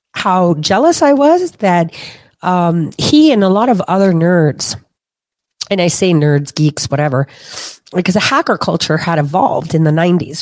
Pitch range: 170-225 Hz